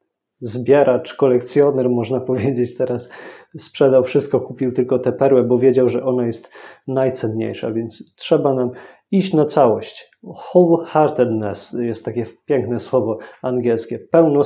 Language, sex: Polish, male